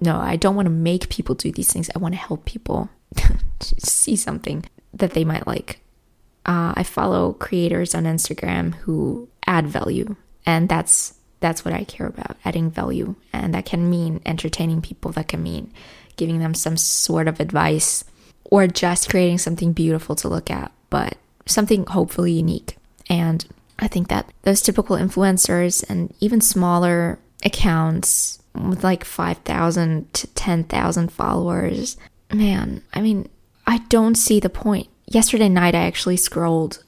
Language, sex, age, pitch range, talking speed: English, female, 20-39, 170-200 Hz, 155 wpm